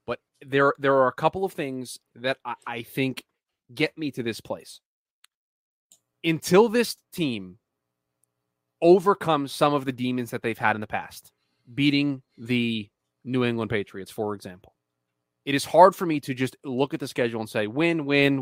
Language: English